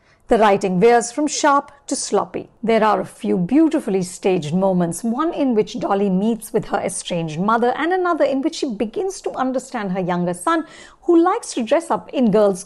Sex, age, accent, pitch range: female, 50-69, Indian, 195-275 Hz